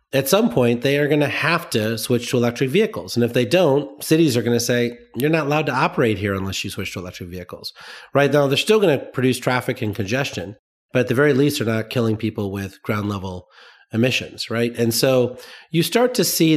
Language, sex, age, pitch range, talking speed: English, male, 40-59, 100-130 Hz, 230 wpm